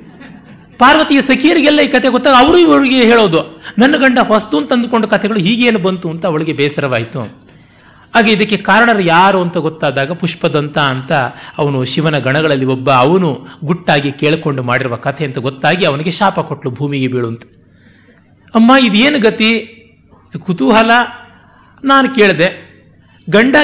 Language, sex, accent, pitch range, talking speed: Kannada, male, native, 140-220 Hz, 125 wpm